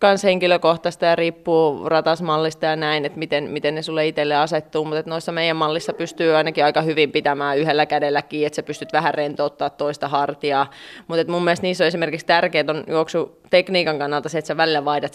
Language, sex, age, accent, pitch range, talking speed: Finnish, female, 20-39, native, 150-170 Hz, 190 wpm